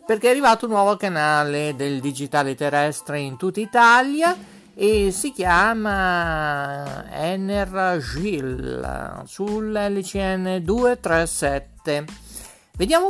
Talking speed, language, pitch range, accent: 80 wpm, English, 145-210 Hz, Italian